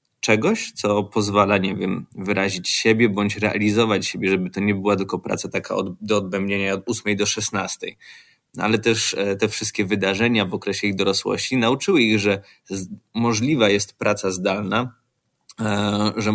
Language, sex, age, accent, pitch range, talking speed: Polish, male, 20-39, native, 100-110 Hz, 145 wpm